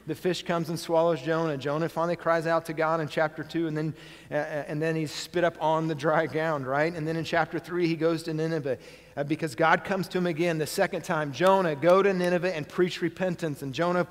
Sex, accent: male, American